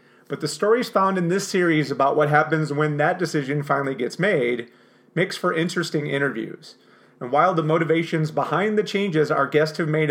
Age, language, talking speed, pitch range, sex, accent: 30-49, English, 185 wpm, 130-155 Hz, male, American